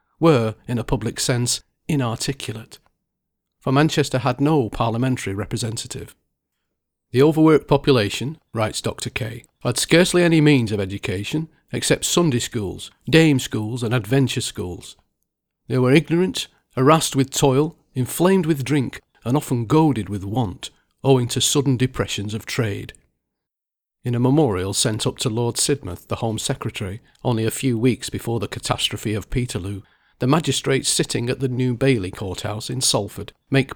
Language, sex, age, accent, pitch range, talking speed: English, male, 40-59, British, 110-140 Hz, 150 wpm